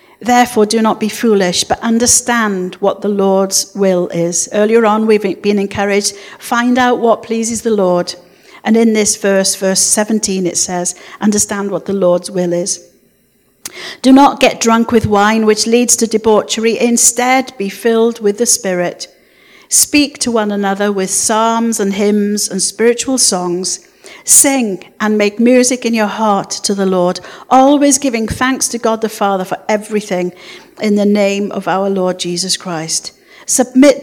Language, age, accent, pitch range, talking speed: English, 50-69, British, 190-240 Hz, 160 wpm